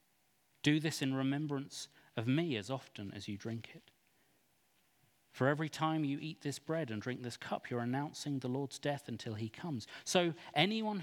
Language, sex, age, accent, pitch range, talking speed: English, male, 40-59, British, 115-155 Hz, 180 wpm